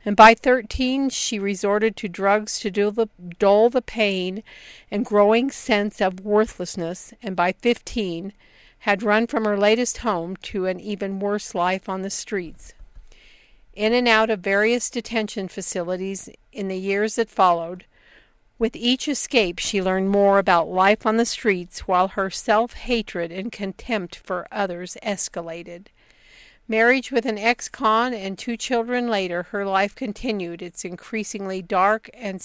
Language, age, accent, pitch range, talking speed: English, 50-69, American, 195-230 Hz, 145 wpm